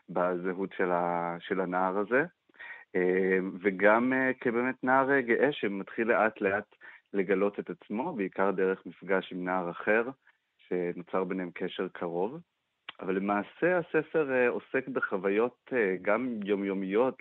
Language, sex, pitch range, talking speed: Hebrew, male, 95-110 Hz, 110 wpm